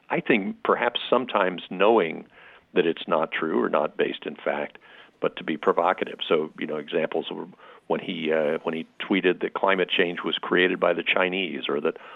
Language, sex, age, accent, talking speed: English, male, 50-69, American, 190 wpm